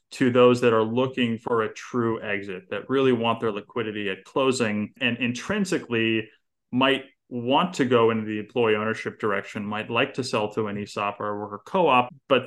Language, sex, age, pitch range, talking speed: English, male, 20-39, 110-130 Hz, 190 wpm